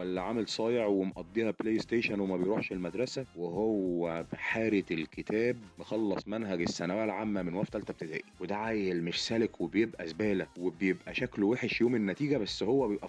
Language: Arabic